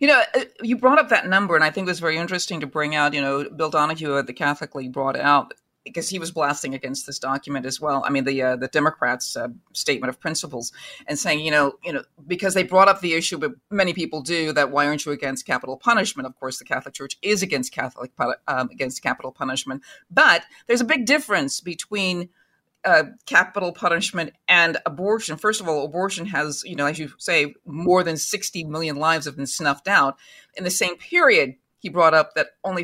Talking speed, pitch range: 220 wpm, 145-200 Hz